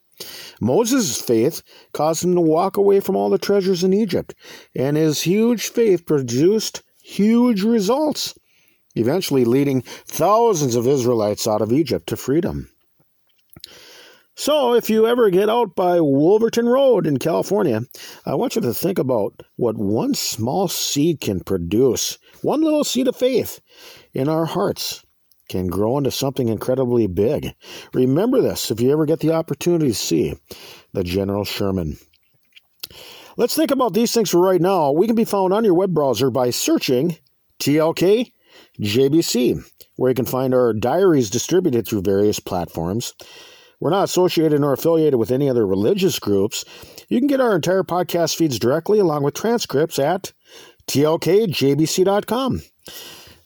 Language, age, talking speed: English, 50-69, 150 wpm